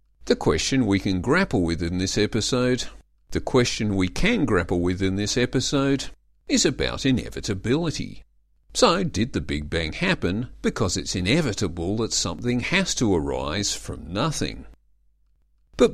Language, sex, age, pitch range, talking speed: English, male, 50-69, 85-125 Hz, 145 wpm